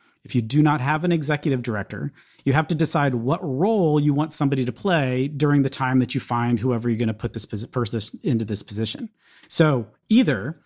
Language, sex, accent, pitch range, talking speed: English, male, American, 120-150 Hz, 210 wpm